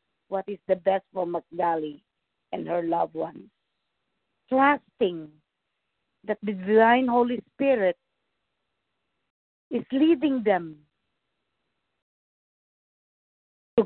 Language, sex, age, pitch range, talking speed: English, female, 50-69, 195-245 Hz, 85 wpm